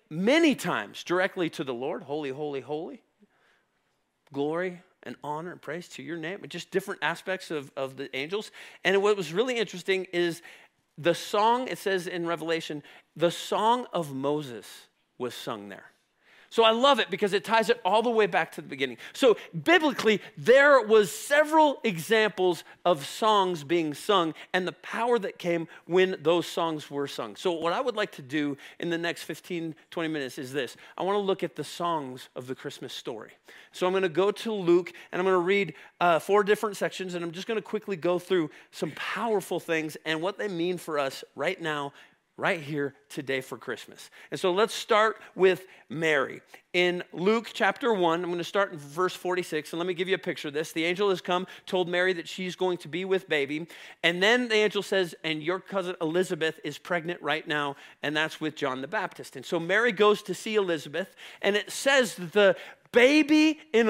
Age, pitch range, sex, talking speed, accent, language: 40-59, 160-205 Hz, male, 195 wpm, American, English